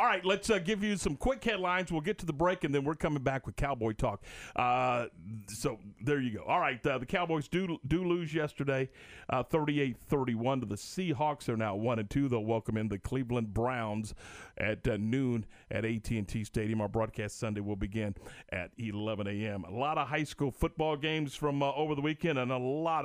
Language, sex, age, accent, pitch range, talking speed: English, male, 40-59, American, 115-165 Hz, 210 wpm